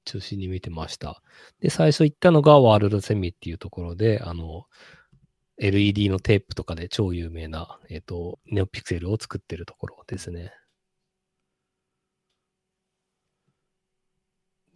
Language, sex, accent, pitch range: Japanese, male, native, 95-135 Hz